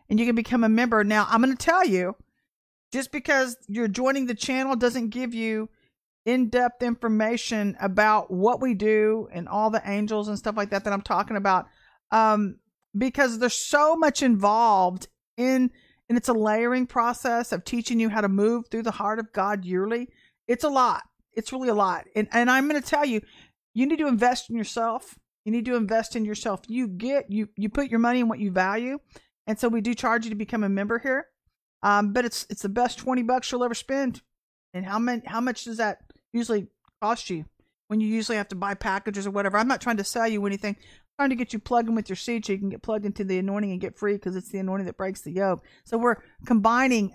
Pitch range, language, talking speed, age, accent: 205-245 Hz, English, 230 wpm, 50-69, American